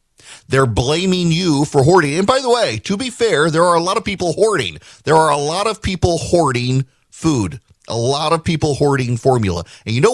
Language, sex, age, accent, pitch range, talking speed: English, male, 40-59, American, 110-155 Hz, 215 wpm